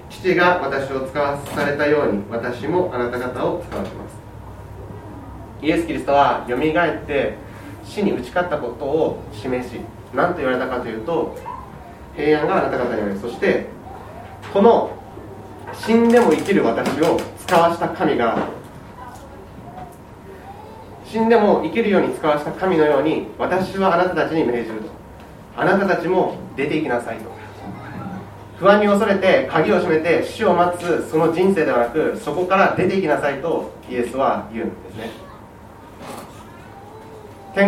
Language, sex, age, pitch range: Japanese, male, 30-49, 110-180 Hz